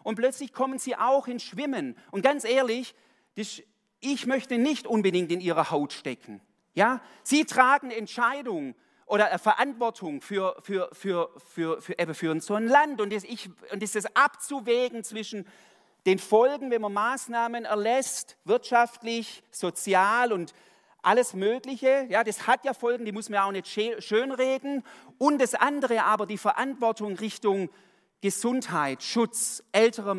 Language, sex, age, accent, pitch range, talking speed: German, male, 40-59, German, 190-240 Hz, 150 wpm